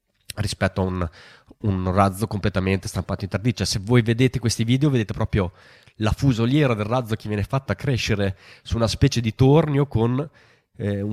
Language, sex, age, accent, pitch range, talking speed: Italian, male, 20-39, native, 100-130 Hz, 175 wpm